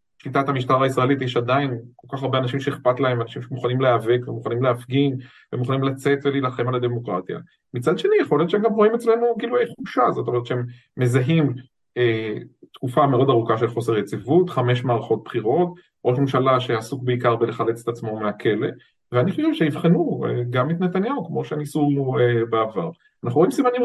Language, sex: Hebrew, male